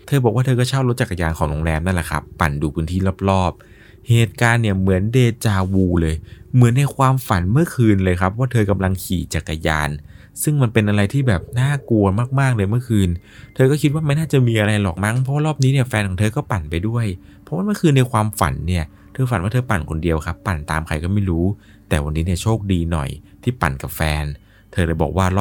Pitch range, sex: 80-110 Hz, male